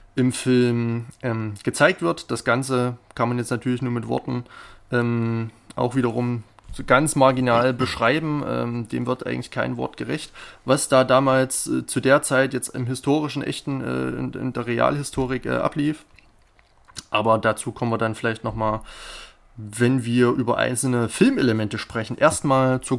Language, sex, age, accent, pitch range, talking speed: German, male, 20-39, German, 115-135 Hz, 155 wpm